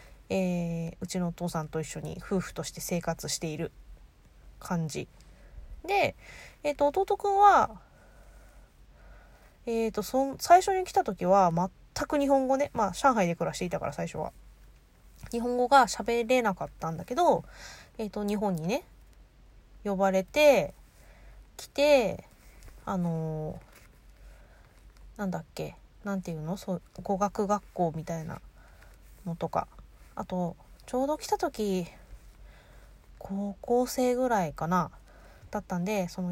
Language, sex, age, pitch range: Japanese, female, 20-39, 170-260 Hz